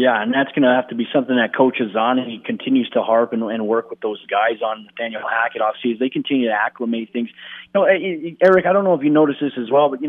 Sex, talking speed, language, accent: male, 280 wpm, English, American